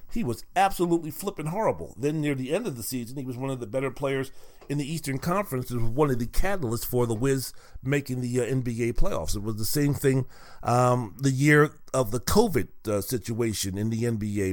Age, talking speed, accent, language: 40-59, 220 wpm, American, English